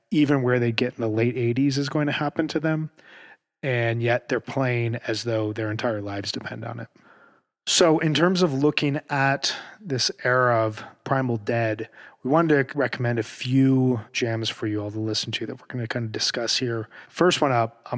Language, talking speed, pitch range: English, 205 wpm, 110-135 Hz